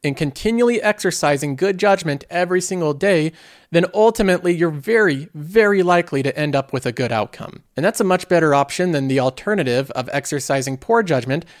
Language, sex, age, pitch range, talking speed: English, male, 40-59, 135-185 Hz, 175 wpm